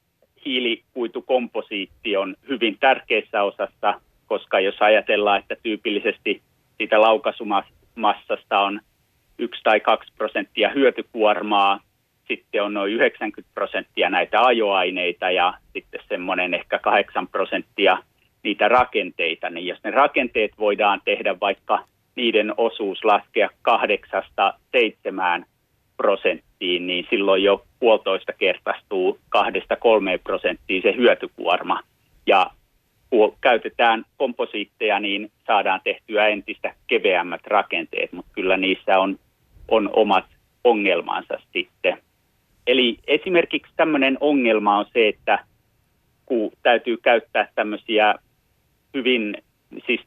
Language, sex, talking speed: Finnish, male, 105 wpm